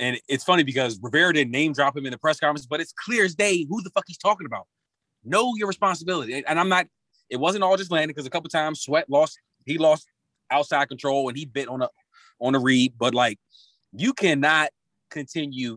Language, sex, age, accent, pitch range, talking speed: English, male, 30-49, American, 130-195 Hz, 215 wpm